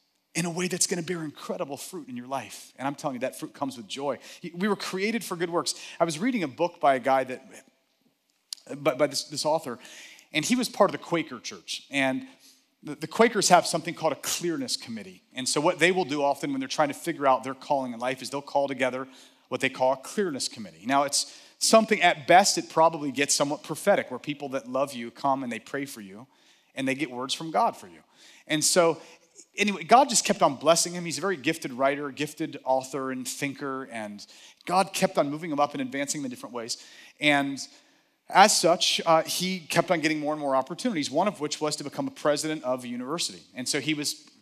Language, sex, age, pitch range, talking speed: English, male, 30-49, 140-180 Hz, 230 wpm